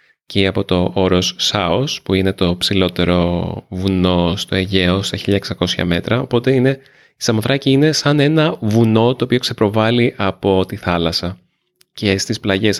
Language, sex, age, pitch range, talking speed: Greek, male, 20-39, 95-125 Hz, 150 wpm